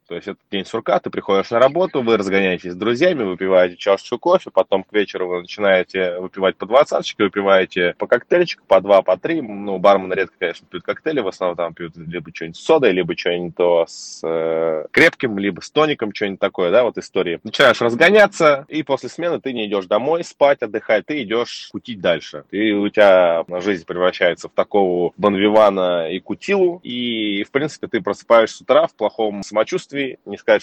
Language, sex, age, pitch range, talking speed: Russian, male, 20-39, 90-115 Hz, 190 wpm